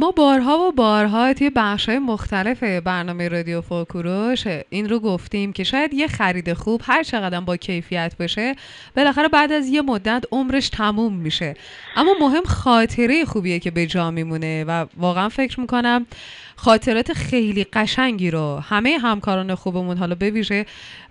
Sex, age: female, 20-39